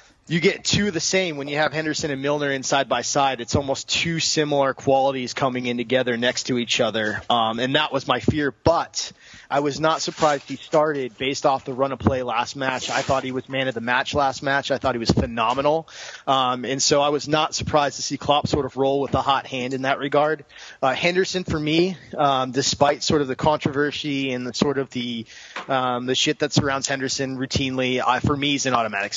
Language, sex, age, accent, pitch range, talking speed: English, male, 20-39, American, 125-145 Hz, 230 wpm